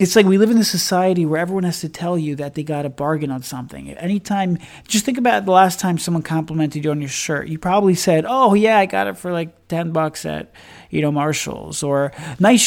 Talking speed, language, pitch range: 240 wpm, English, 150-190 Hz